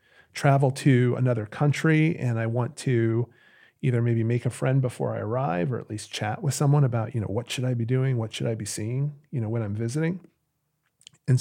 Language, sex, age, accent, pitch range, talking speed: English, male, 40-59, American, 110-140 Hz, 215 wpm